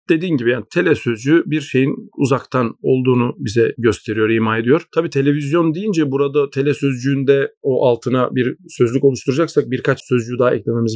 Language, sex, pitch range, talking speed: Turkish, male, 130-160 Hz, 140 wpm